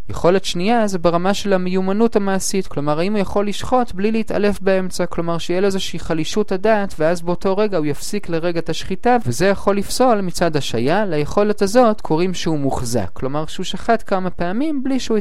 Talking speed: 180 wpm